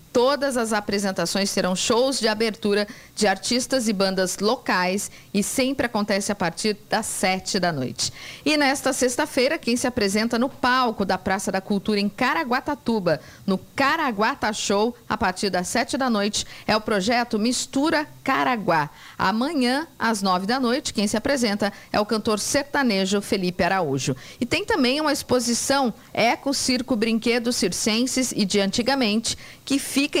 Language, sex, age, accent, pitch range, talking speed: Portuguese, female, 50-69, Brazilian, 200-255 Hz, 155 wpm